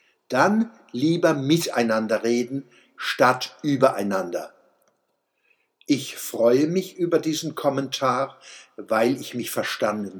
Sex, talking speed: male, 95 wpm